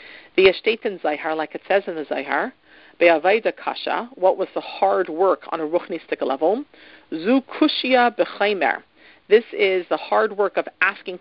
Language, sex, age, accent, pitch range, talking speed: English, female, 40-59, American, 165-215 Hz, 150 wpm